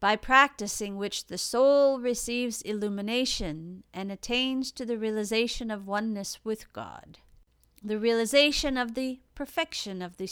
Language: English